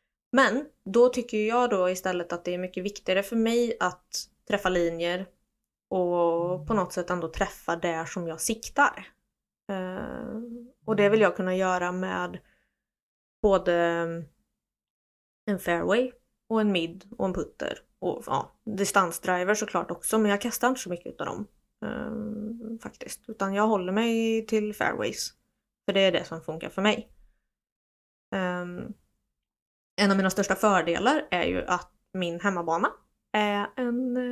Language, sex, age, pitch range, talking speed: Swedish, female, 20-39, 185-230 Hz, 150 wpm